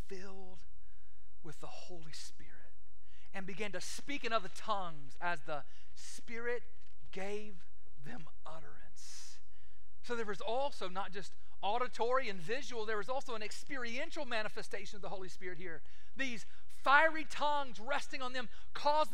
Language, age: English, 40-59